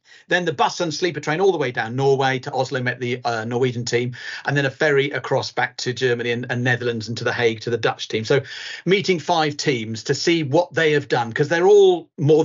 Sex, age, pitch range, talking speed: male, 40-59, 135-180 Hz, 245 wpm